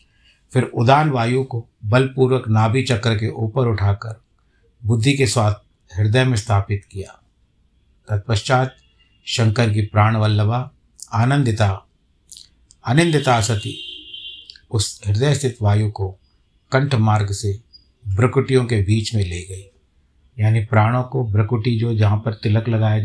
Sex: male